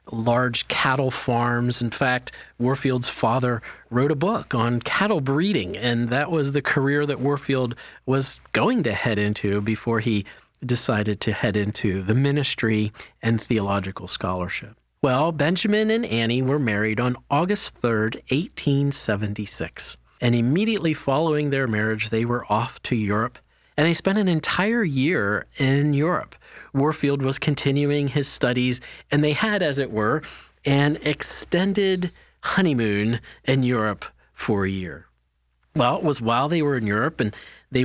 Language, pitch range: English, 115-145 Hz